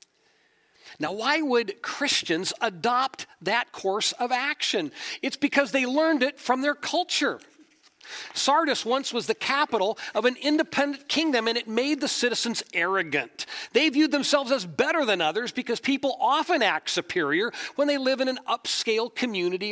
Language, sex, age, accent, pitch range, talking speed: English, male, 40-59, American, 225-315 Hz, 155 wpm